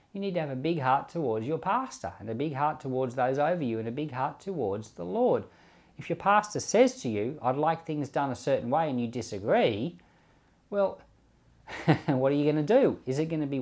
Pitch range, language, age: 110-150 Hz, English, 40-59